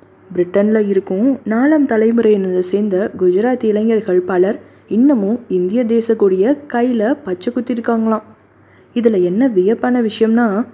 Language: Tamil